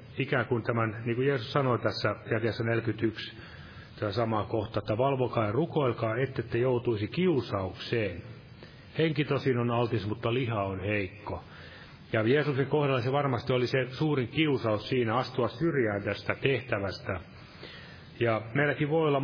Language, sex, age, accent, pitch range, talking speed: Finnish, male, 30-49, native, 110-135 Hz, 145 wpm